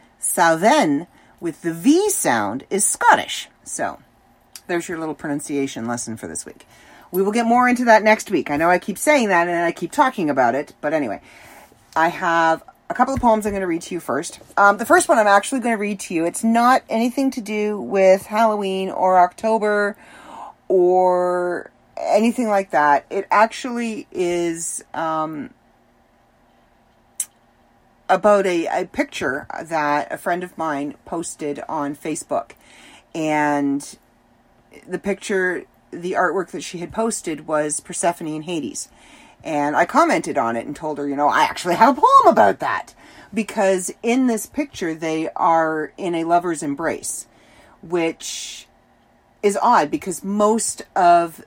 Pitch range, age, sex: 160-220 Hz, 40-59, female